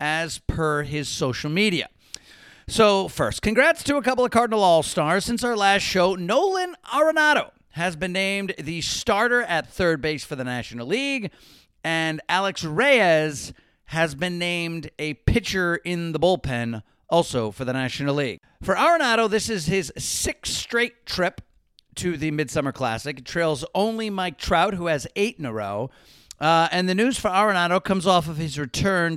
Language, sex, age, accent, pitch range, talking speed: English, male, 50-69, American, 145-185 Hz, 170 wpm